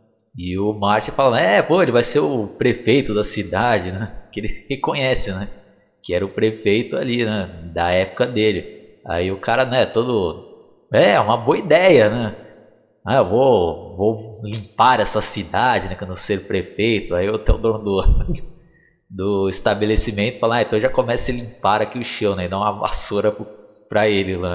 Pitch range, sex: 100-120 Hz, male